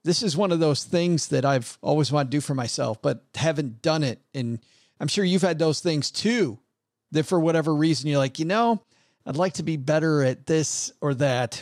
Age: 40-59